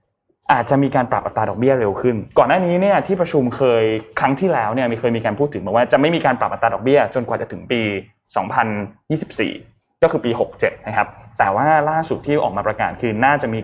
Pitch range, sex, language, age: 110-150 Hz, male, Thai, 20-39